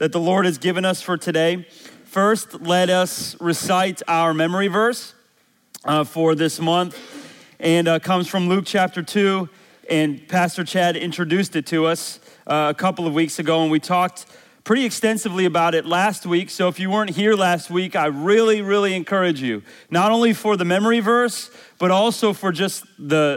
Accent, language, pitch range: American, English, 155-195 Hz